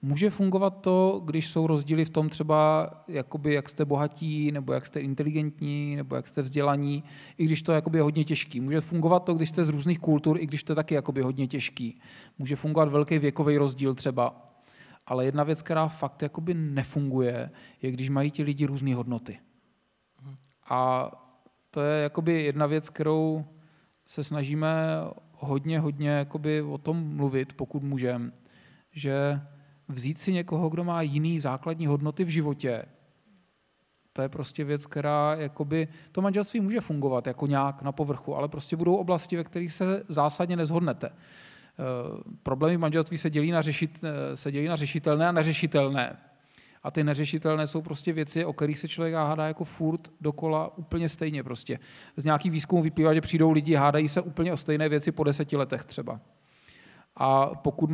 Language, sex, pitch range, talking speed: Czech, male, 145-160 Hz, 170 wpm